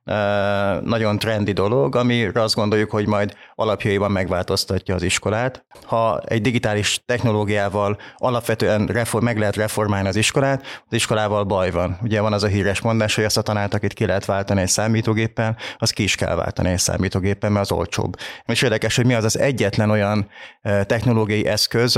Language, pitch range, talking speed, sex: Hungarian, 100-115 Hz, 170 wpm, male